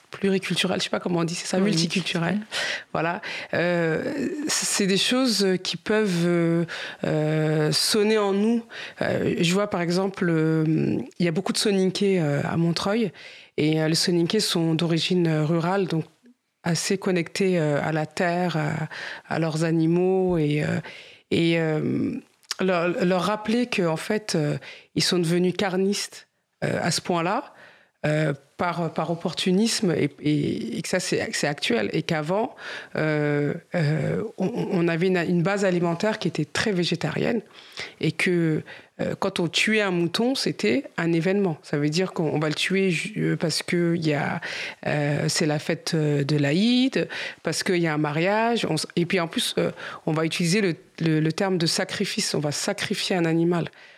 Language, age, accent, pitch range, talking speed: French, 30-49, French, 160-195 Hz, 170 wpm